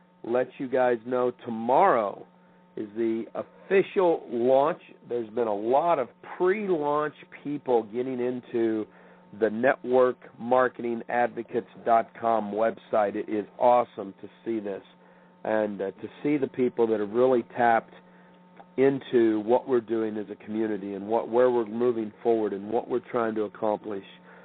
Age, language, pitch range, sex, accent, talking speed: 50-69, English, 110-135 Hz, male, American, 135 wpm